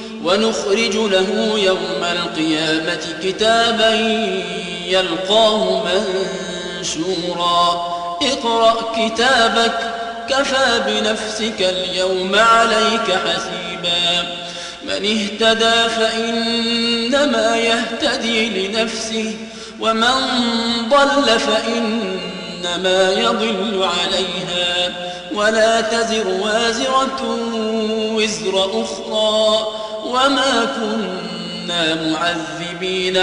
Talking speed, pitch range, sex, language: 60 wpm, 185-230 Hz, male, Arabic